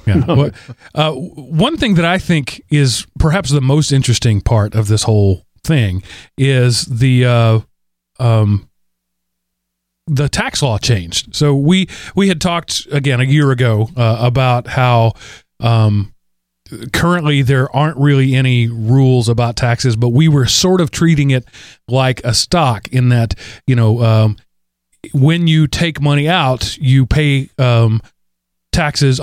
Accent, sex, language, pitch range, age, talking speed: American, male, English, 110-140 Hz, 40-59, 145 wpm